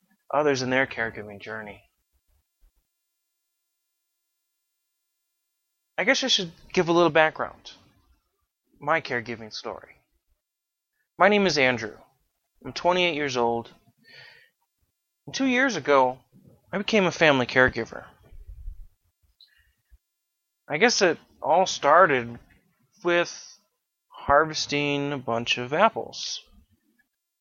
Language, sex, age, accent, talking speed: English, male, 20-39, American, 95 wpm